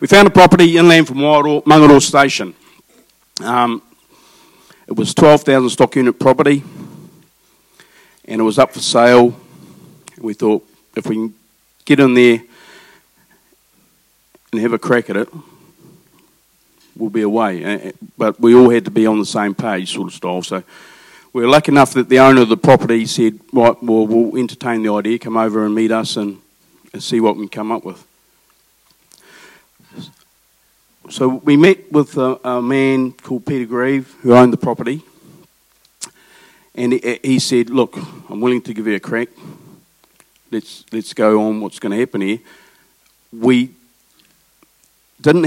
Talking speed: 155 wpm